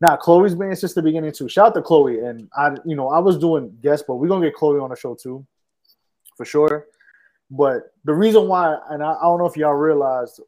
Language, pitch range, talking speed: English, 125-155 Hz, 240 wpm